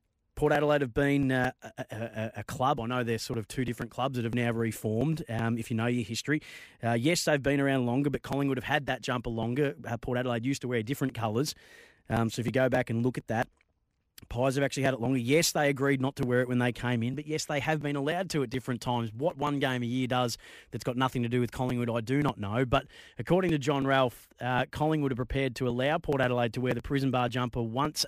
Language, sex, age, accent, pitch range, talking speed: English, male, 30-49, Australian, 120-145 Hz, 260 wpm